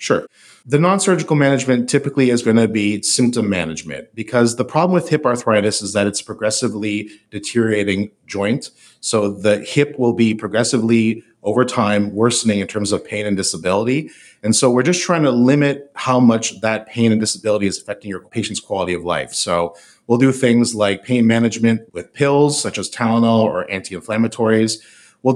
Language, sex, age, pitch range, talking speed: English, male, 30-49, 105-125 Hz, 180 wpm